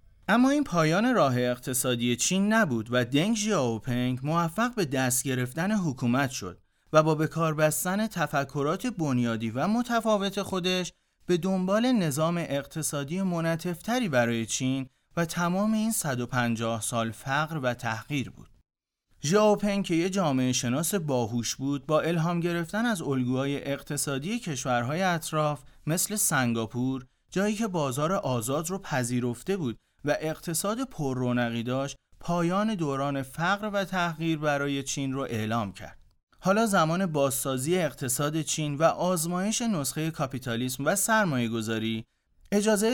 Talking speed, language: 125 wpm, Persian